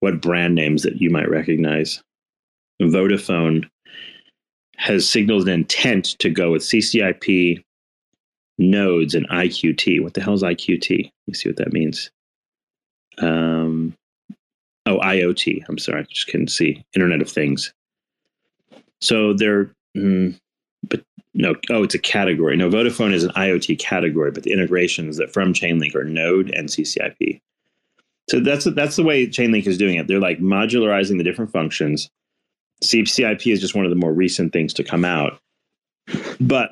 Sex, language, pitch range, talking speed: male, English, 85-105 Hz, 155 wpm